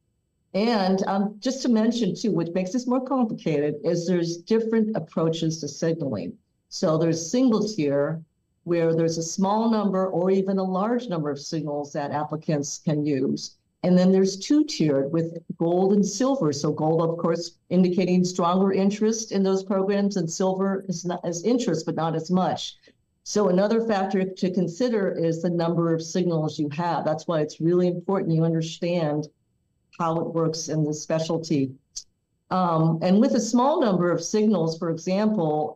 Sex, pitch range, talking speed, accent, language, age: female, 160-195 Hz, 170 wpm, American, English, 50-69